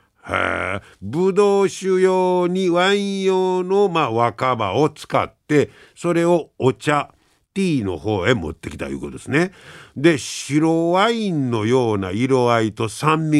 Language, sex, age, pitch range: Japanese, male, 50-69, 105-160 Hz